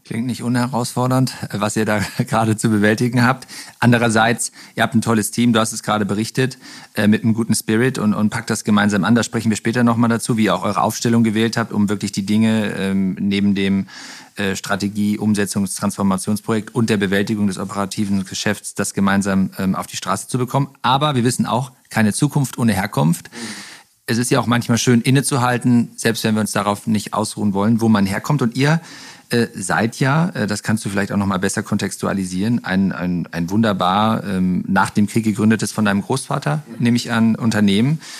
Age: 40-59